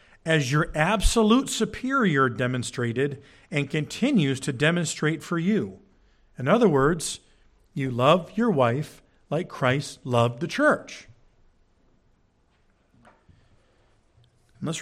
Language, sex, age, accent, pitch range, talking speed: English, male, 50-69, American, 115-185 Hz, 95 wpm